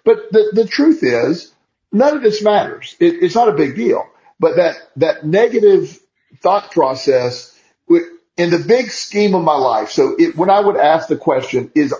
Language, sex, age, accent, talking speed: English, male, 50-69, American, 175 wpm